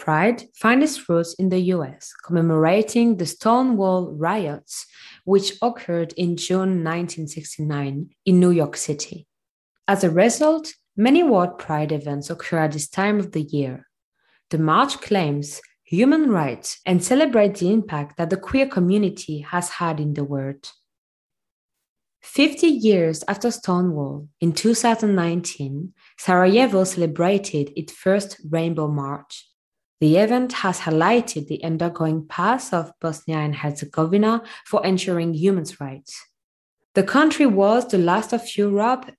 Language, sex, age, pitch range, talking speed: English, female, 20-39, 160-220 Hz, 130 wpm